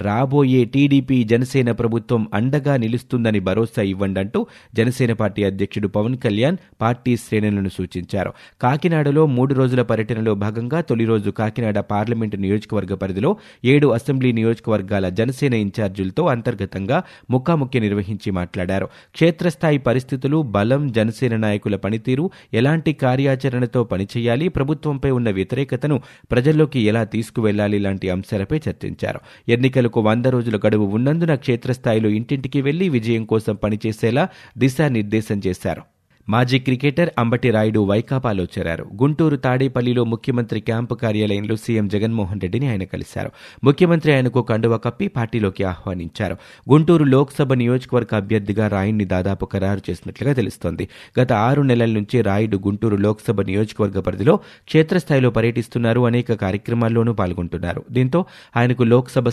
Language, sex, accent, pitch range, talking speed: Telugu, male, native, 105-130 Hz, 105 wpm